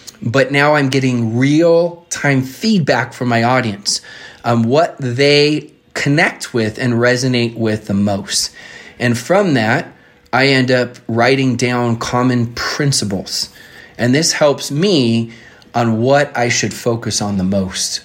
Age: 30-49